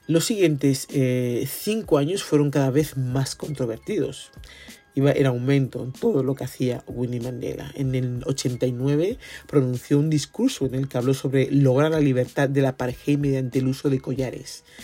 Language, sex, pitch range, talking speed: Spanish, male, 130-150 Hz, 170 wpm